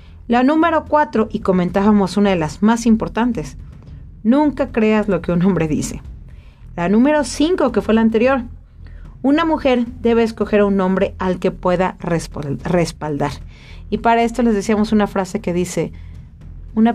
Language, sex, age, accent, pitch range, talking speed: Spanish, female, 40-59, Mexican, 180-235 Hz, 160 wpm